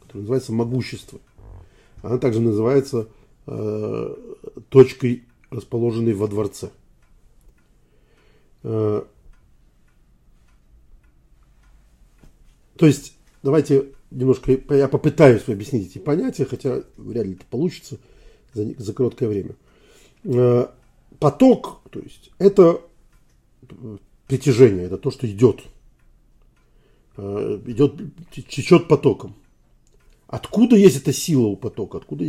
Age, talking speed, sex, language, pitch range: 50-69, 95 wpm, male, Russian, 110-145 Hz